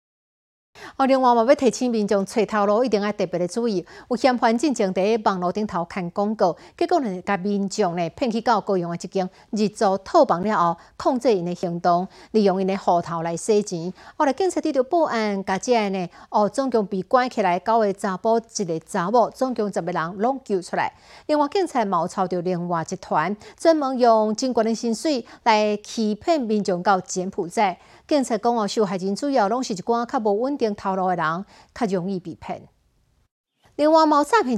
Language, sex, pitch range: Chinese, female, 185-235 Hz